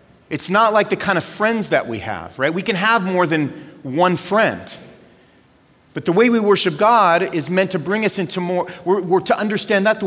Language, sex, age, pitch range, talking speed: English, male, 40-59, 120-175 Hz, 220 wpm